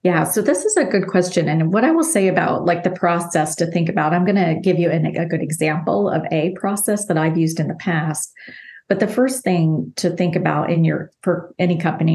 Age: 30-49